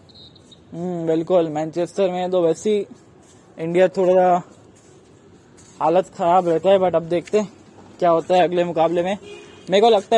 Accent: native